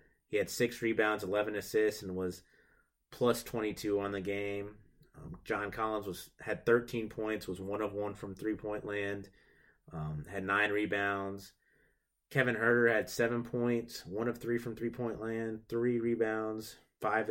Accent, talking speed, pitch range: American, 155 wpm, 105-115 Hz